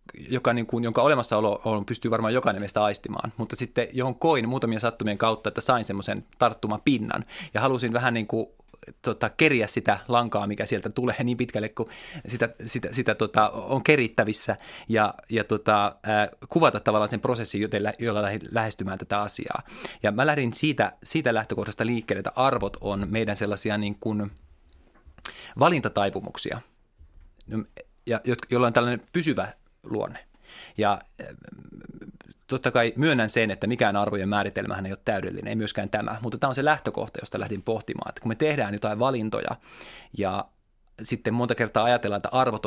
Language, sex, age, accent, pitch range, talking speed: Finnish, male, 30-49, native, 105-125 Hz, 160 wpm